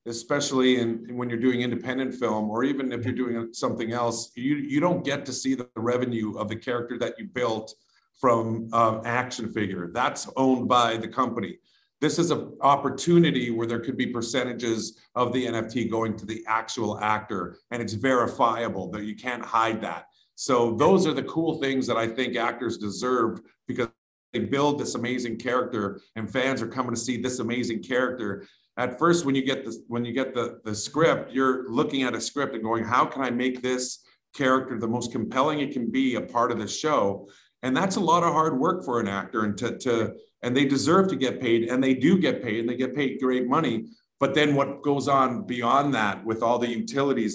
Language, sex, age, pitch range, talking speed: English, male, 50-69, 115-130 Hz, 210 wpm